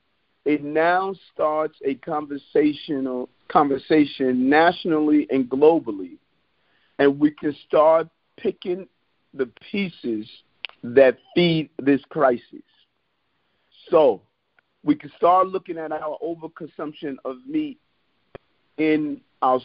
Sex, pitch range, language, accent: male, 140-170 Hz, English, American